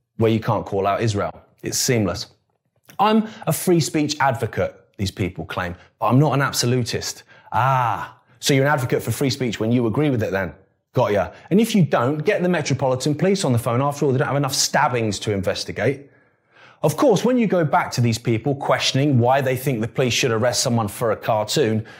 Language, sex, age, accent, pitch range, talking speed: English, male, 30-49, British, 115-155 Hz, 215 wpm